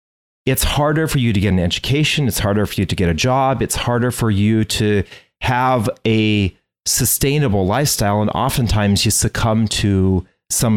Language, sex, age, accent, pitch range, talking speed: English, male, 40-59, American, 105-135 Hz, 175 wpm